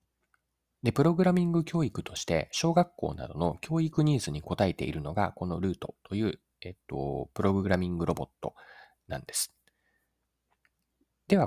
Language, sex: Japanese, male